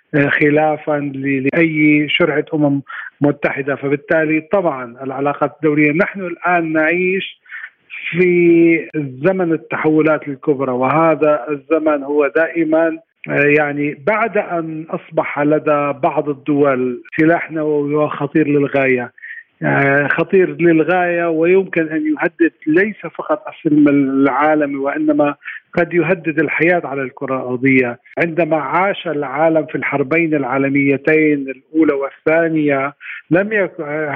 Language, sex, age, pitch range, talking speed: Arabic, male, 40-59, 145-165 Hz, 100 wpm